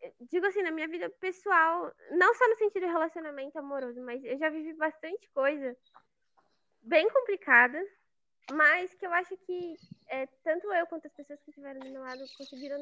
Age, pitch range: 10-29, 255-330 Hz